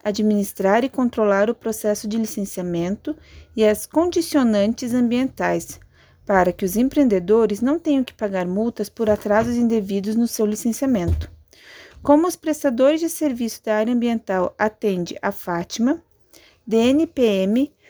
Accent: Brazilian